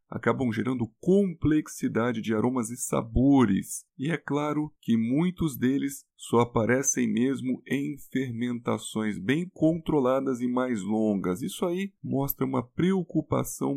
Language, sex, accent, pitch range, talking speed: Portuguese, male, Brazilian, 120-160 Hz, 120 wpm